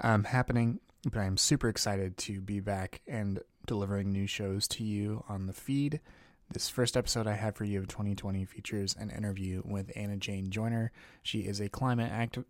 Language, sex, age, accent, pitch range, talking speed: English, male, 20-39, American, 100-120 Hz, 180 wpm